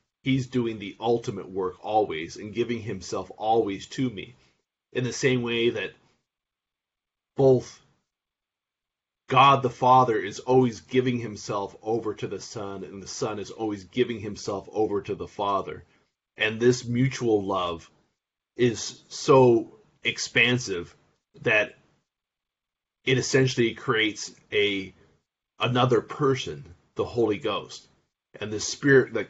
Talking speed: 125 wpm